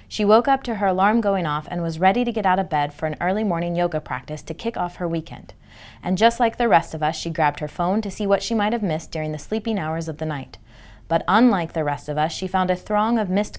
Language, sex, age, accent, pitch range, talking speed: English, female, 30-49, American, 155-200 Hz, 285 wpm